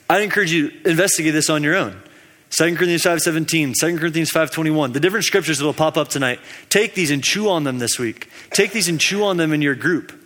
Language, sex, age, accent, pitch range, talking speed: English, male, 20-39, American, 145-180 Hz, 235 wpm